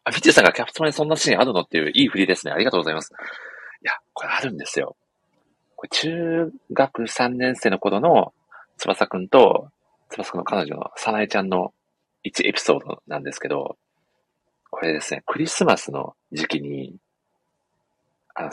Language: Japanese